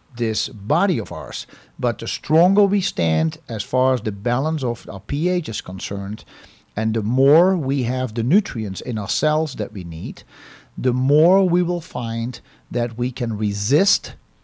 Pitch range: 110-145 Hz